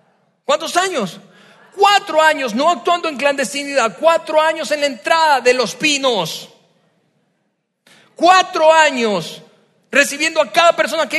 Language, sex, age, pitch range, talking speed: Spanish, male, 40-59, 235-305 Hz, 125 wpm